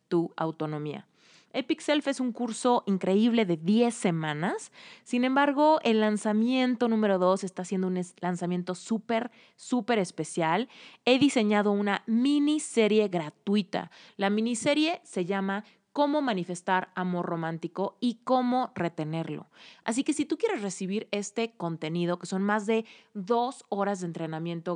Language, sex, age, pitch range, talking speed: Spanish, female, 30-49, 180-230 Hz, 135 wpm